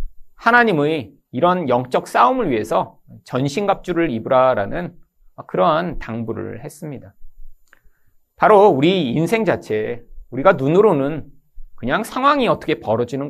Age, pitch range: 40-59, 110-170 Hz